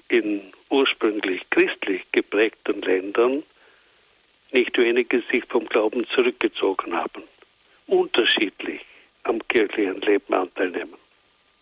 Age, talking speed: 60-79, 90 wpm